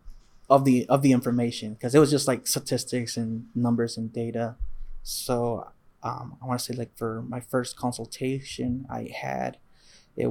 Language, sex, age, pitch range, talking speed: English, male, 20-39, 120-130 Hz, 170 wpm